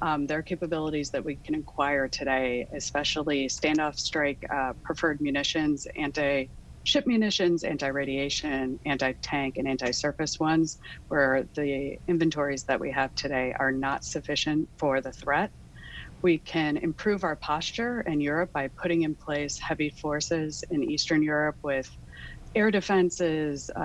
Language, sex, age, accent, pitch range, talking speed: English, female, 30-49, American, 140-165 Hz, 135 wpm